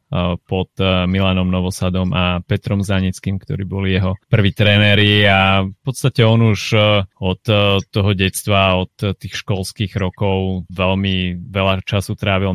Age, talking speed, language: 30-49, 130 wpm, Slovak